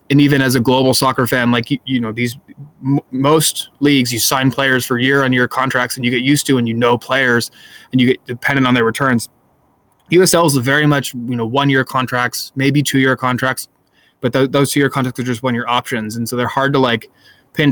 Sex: male